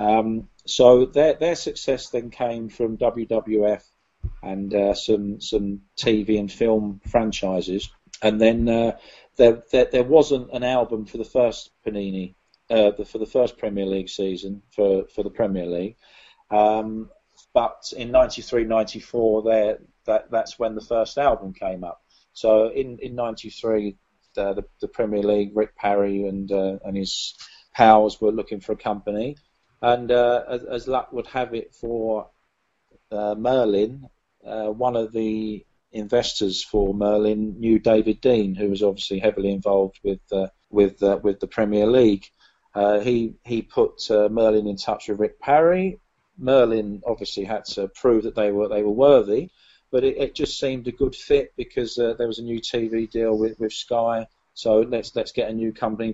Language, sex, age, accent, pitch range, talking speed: English, male, 40-59, British, 105-120 Hz, 175 wpm